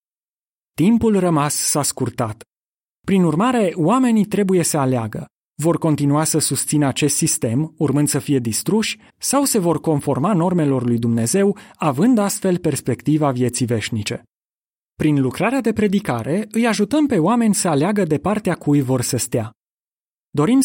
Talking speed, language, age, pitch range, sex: 140 wpm, Romanian, 30-49, 130-185 Hz, male